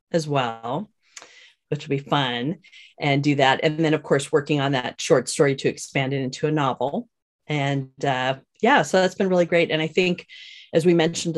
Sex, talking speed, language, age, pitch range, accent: female, 200 wpm, English, 40-59, 140-180 Hz, American